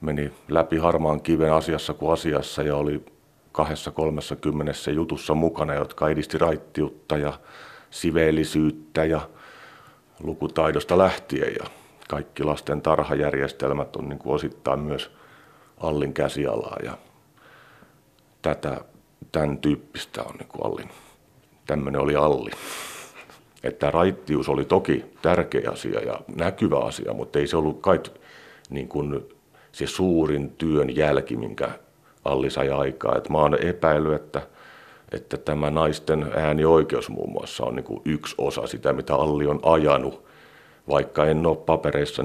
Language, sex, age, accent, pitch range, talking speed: Finnish, male, 50-69, native, 75-80 Hz, 125 wpm